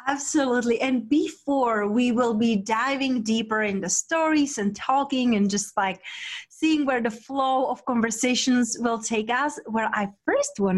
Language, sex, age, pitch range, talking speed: English, female, 30-49, 210-265 Hz, 160 wpm